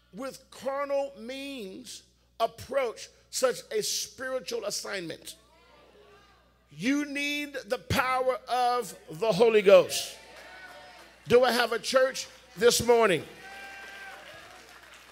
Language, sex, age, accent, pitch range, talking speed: English, male, 50-69, American, 150-255 Hz, 90 wpm